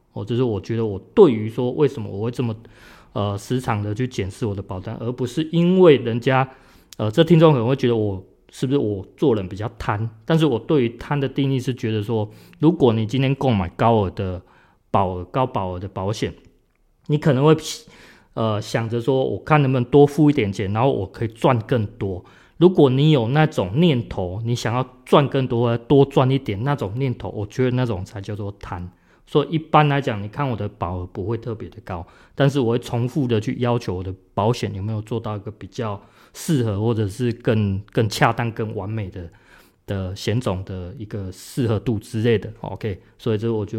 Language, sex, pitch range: Chinese, male, 105-135 Hz